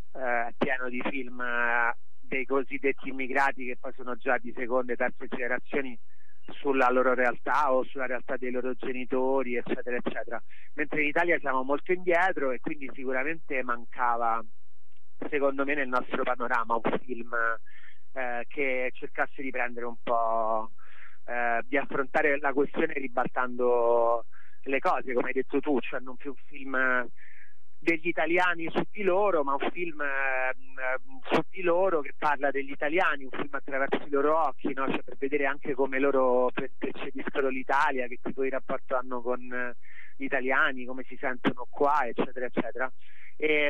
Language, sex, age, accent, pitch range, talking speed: Italian, male, 30-49, native, 125-140 Hz, 160 wpm